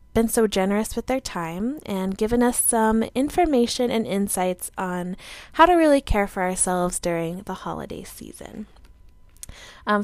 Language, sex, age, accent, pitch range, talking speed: English, female, 10-29, American, 180-225 Hz, 150 wpm